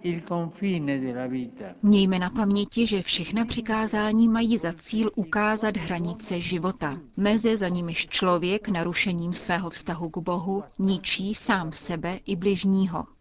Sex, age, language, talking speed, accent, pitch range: female, 30-49, Czech, 120 wpm, native, 175-210 Hz